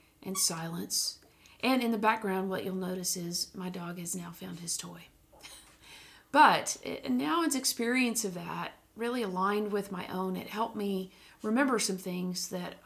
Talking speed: 160 wpm